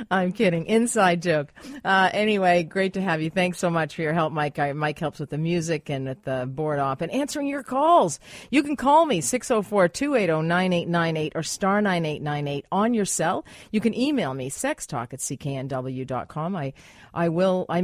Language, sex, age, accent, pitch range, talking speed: English, female, 40-59, American, 150-210 Hz, 180 wpm